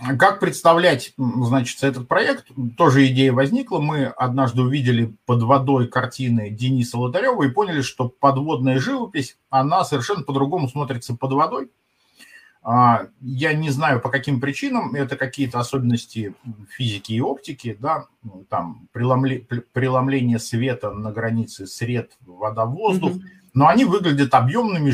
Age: 50-69